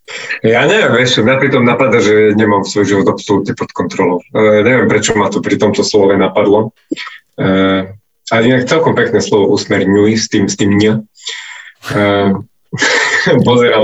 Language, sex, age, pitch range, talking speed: Slovak, male, 20-39, 105-130 Hz, 150 wpm